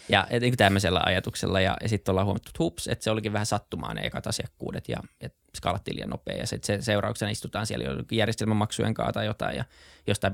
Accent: native